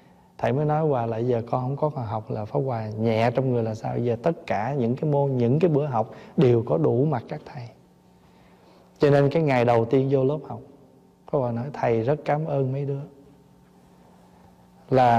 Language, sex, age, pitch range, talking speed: Vietnamese, male, 20-39, 115-160 Hz, 215 wpm